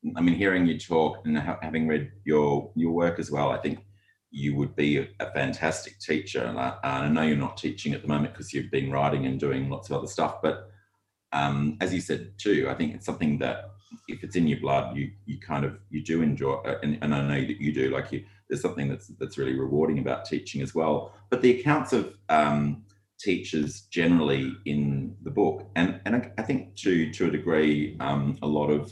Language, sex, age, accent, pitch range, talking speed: English, male, 30-49, Australian, 70-100 Hz, 220 wpm